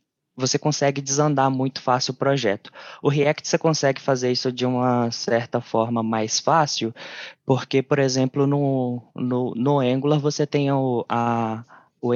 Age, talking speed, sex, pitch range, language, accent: 20-39, 155 wpm, male, 115-135 Hz, Portuguese, Brazilian